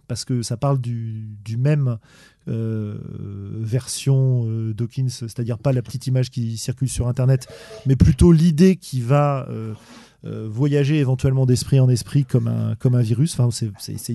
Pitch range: 120-145 Hz